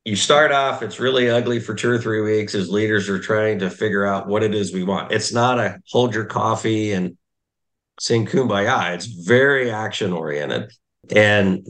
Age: 50-69